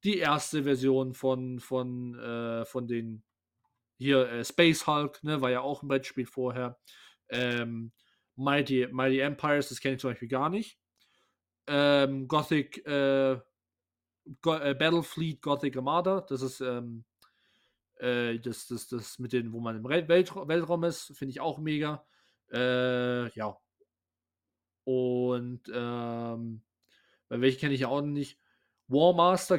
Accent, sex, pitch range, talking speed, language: German, male, 125-160 Hz, 140 wpm, German